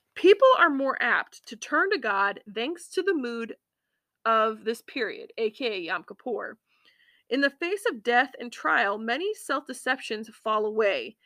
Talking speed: 155 wpm